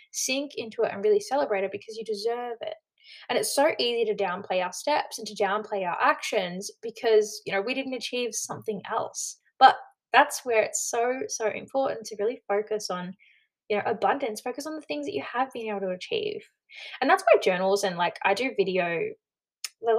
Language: English